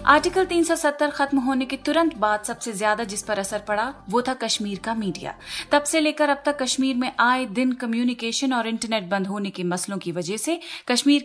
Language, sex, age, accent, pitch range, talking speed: Hindi, female, 30-49, native, 215-275 Hz, 205 wpm